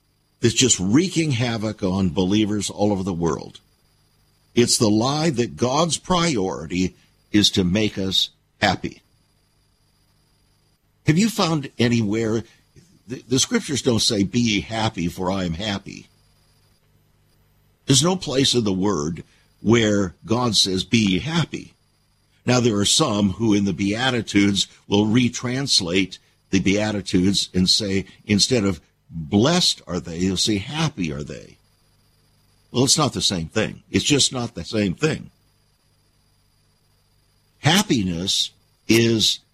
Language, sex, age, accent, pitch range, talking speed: English, male, 50-69, American, 100-130 Hz, 130 wpm